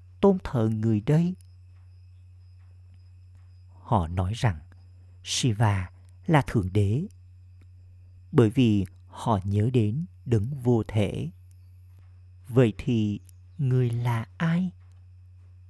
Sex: male